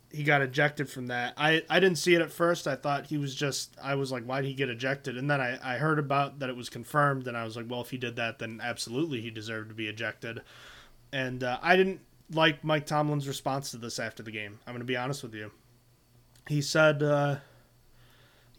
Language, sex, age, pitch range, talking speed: English, male, 20-39, 125-150 Hz, 235 wpm